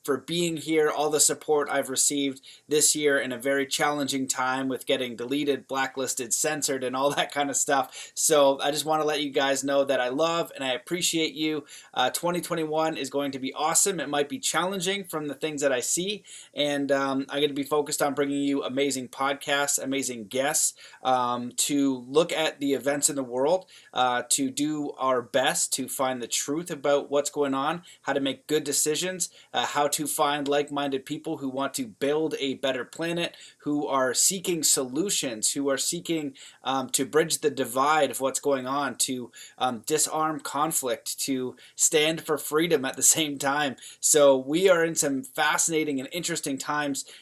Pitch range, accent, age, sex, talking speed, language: 135-155 Hz, American, 20-39, male, 190 wpm, English